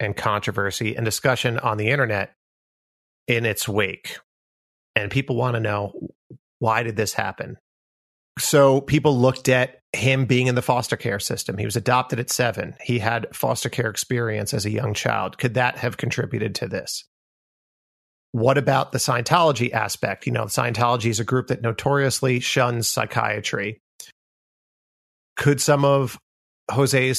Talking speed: 150 wpm